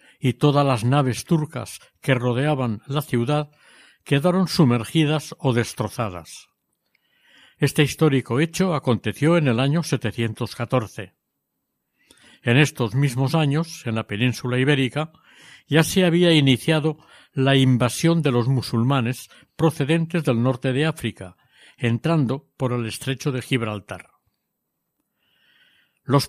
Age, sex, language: 60-79, male, Spanish